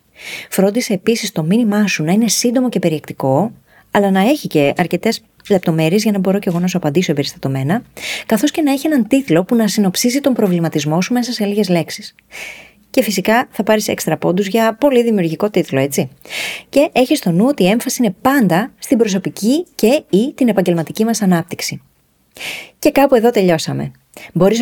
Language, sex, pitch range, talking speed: Greek, female, 170-235 Hz, 180 wpm